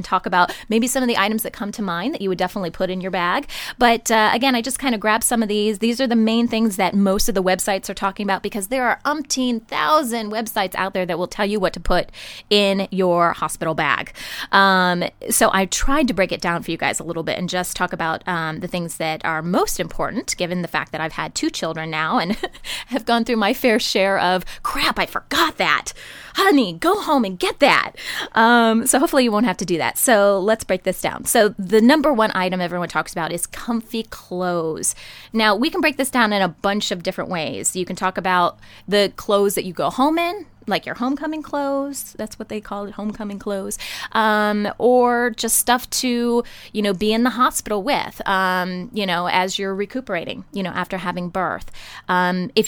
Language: English